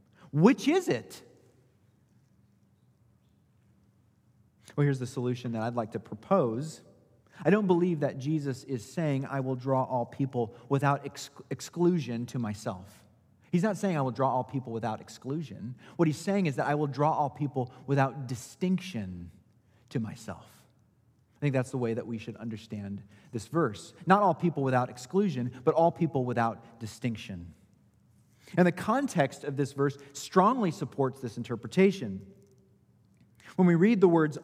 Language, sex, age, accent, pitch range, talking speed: English, male, 30-49, American, 120-180 Hz, 155 wpm